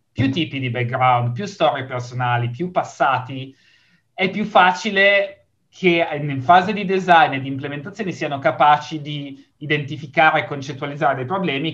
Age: 30-49